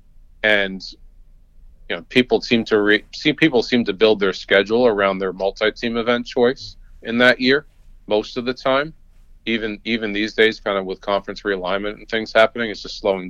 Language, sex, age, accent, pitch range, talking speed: English, male, 40-59, American, 95-120 Hz, 185 wpm